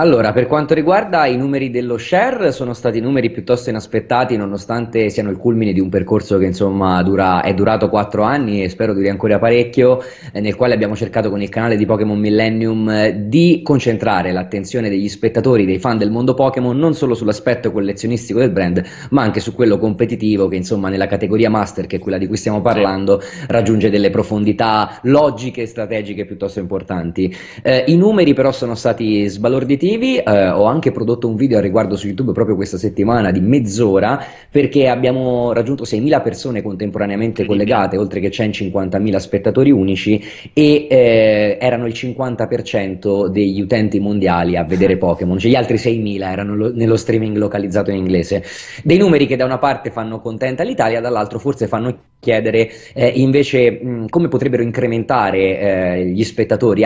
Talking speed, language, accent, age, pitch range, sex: 165 wpm, Italian, native, 20-39, 100-125 Hz, male